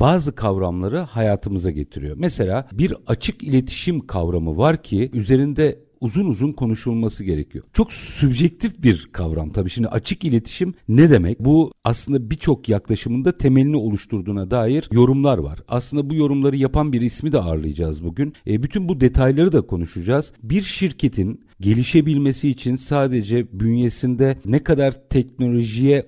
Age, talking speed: 50-69, 135 wpm